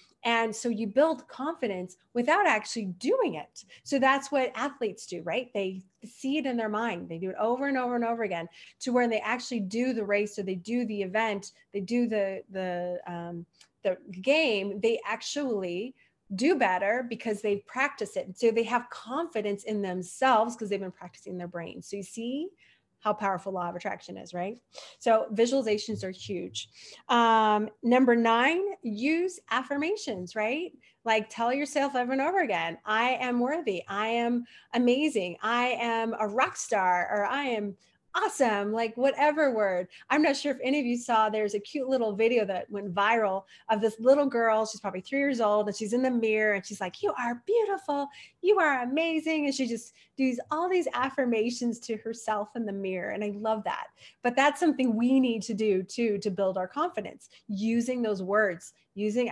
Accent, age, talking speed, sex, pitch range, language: American, 30-49, 185 wpm, female, 205-255 Hz, English